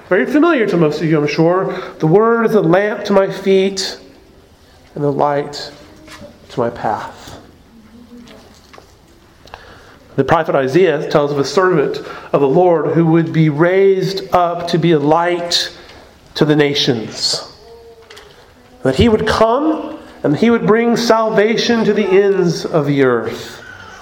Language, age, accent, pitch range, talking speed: English, 40-59, American, 175-245 Hz, 145 wpm